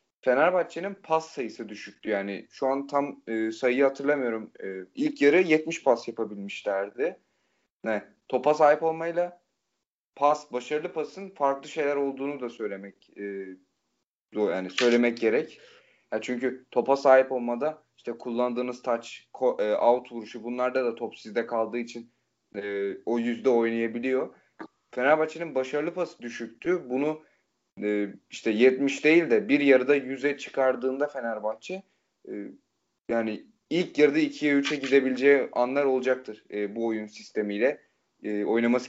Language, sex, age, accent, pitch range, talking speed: Turkish, male, 30-49, native, 110-145 Hz, 120 wpm